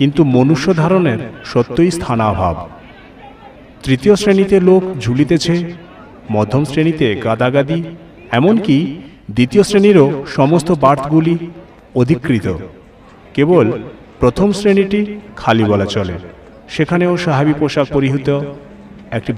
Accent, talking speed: native, 90 wpm